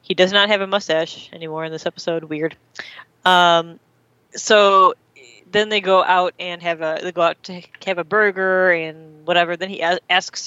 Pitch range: 165-185 Hz